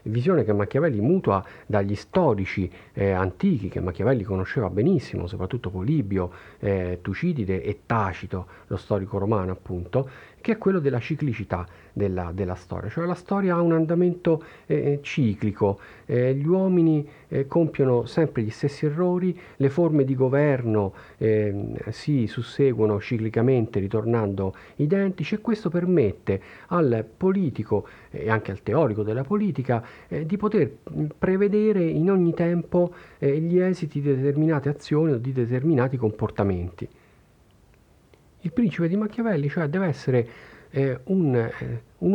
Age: 50-69